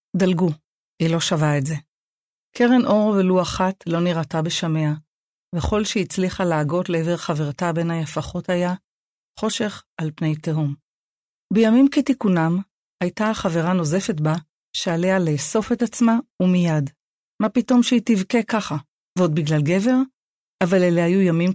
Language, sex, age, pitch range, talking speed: Hebrew, female, 40-59, 160-205 Hz, 135 wpm